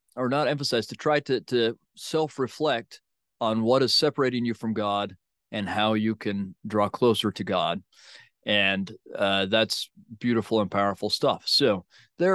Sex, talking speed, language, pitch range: male, 155 wpm, English, 100-120 Hz